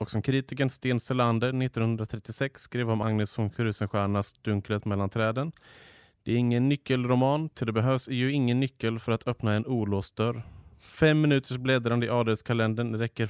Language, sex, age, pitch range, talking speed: English, male, 30-49, 100-125 Hz, 165 wpm